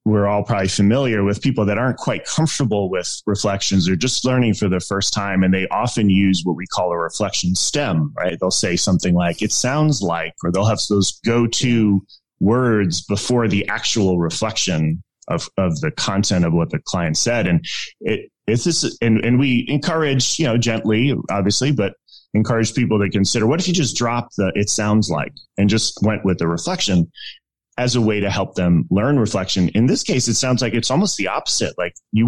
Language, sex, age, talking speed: English, male, 30-49, 200 wpm